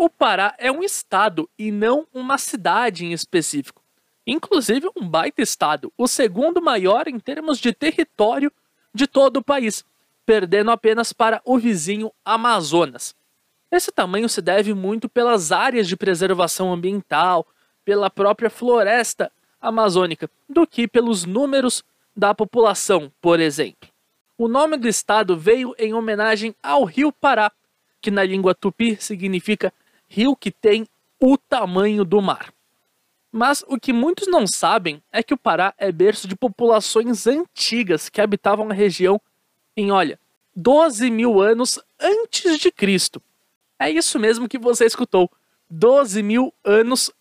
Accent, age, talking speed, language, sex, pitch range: Brazilian, 20-39, 140 wpm, Portuguese, male, 200-260 Hz